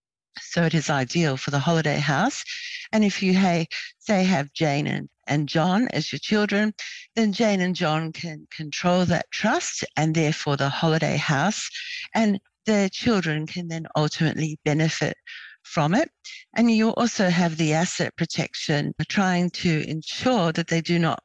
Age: 60-79